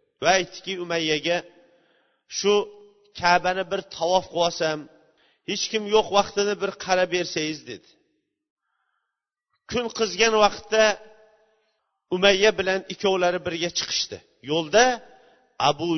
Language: Bulgarian